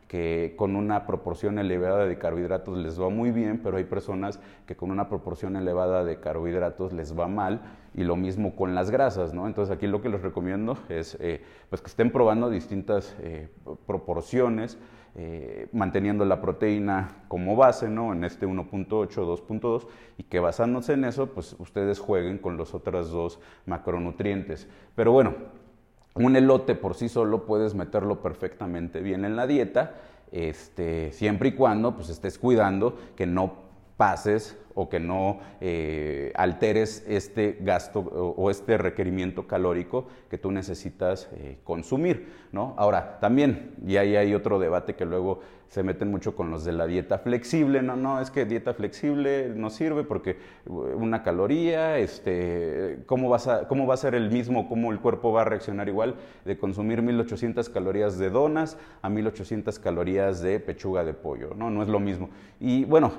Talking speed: 165 wpm